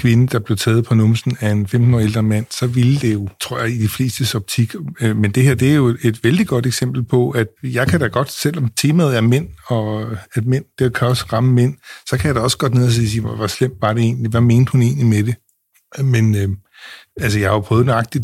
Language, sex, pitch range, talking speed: Danish, male, 115-135 Hz, 255 wpm